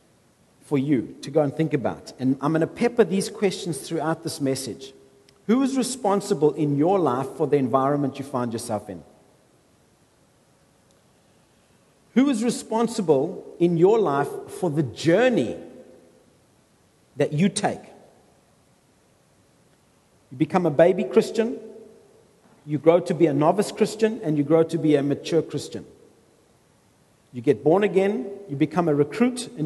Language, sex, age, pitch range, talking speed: English, male, 50-69, 150-230 Hz, 145 wpm